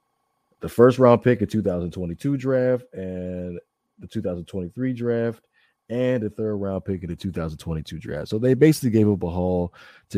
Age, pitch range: 20-39, 90-110 Hz